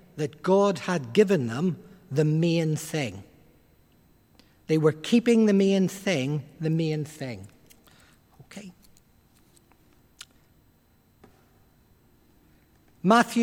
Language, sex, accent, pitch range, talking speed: English, male, British, 160-220 Hz, 85 wpm